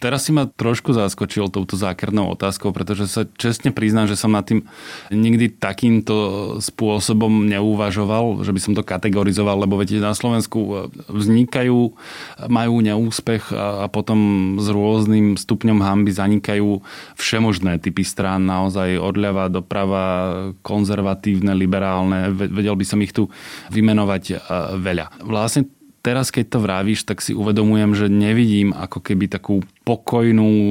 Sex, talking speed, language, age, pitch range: male, 135 wpm, Slovak, 20-39, 100-115 Hz